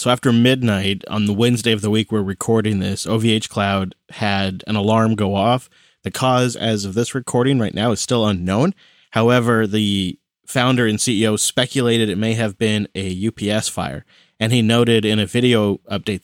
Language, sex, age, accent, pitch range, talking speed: English, male, 30-49, American, 100-120 Hz, 185 wpm